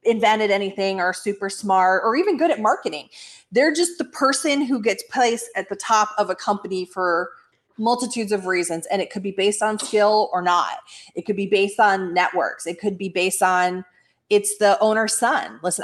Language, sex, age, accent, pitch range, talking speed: English, female, 30-49, American, 195-285 Hz, 195 wpm